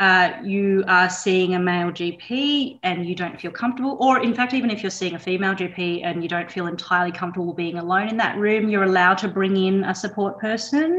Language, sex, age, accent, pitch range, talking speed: English, female, 30-49, Australian, 175-215 Hz, 225 wpm